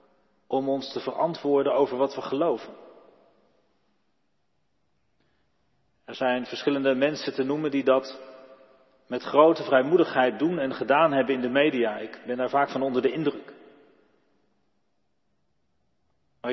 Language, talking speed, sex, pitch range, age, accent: Dutch, 125 wpm, male, 130-150 Hz, 40-59, Dutch